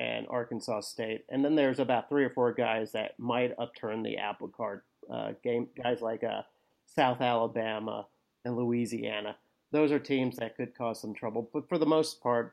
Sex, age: male, 40-59